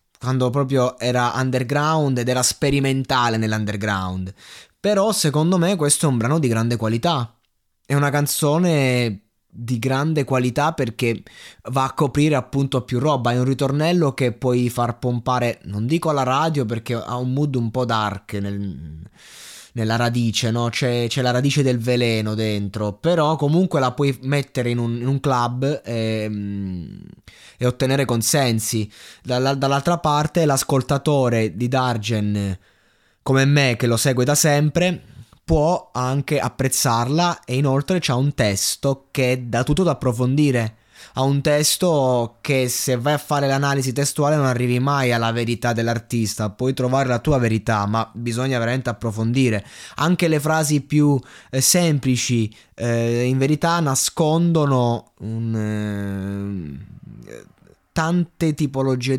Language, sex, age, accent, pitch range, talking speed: Italian, male, 20-39, native, 115-145 Hz, 140 wpm